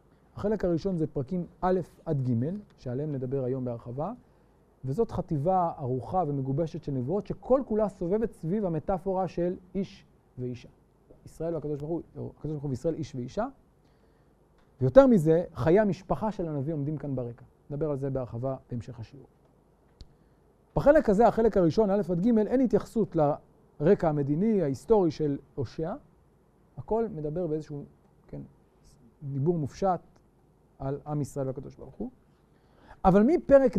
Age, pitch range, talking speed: 40-59, 145-205 Hz, 130 wpm